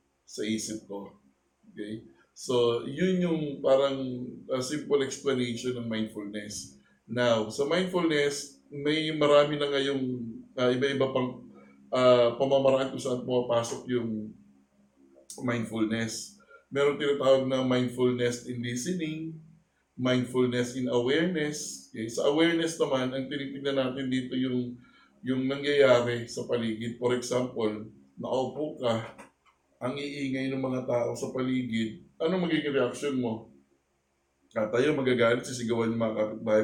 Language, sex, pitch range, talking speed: Filipino, male, 110-140 Hz, 125 wpm